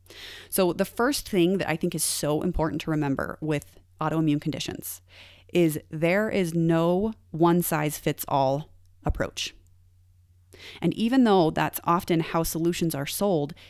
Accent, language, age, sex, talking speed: American, English, 30-49, female, 145 wpm